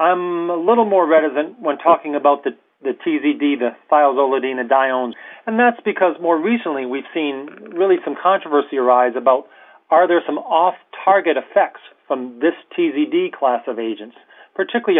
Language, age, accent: English, 40-59, American